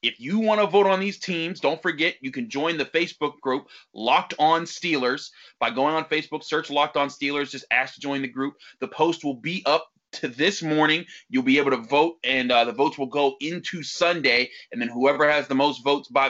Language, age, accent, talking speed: English, 30-49, American, 230 wpm